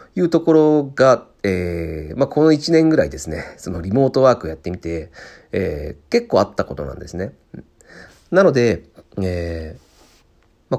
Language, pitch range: Japanese, 85-140 Hz